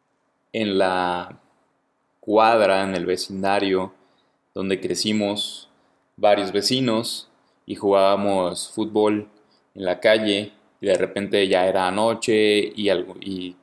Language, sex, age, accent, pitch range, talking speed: English, male, 20-39, Mexican, 95-120 Hz, 110 wpm